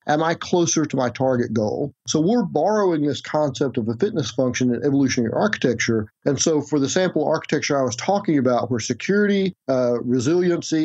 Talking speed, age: 185 wpm, 40-59